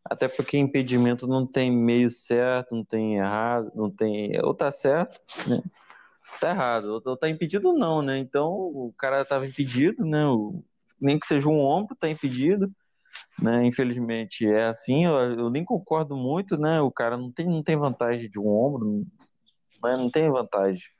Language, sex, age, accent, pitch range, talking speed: Portuguese, male, 20-39, Brazilian, 110-140 Hz, 170 wpm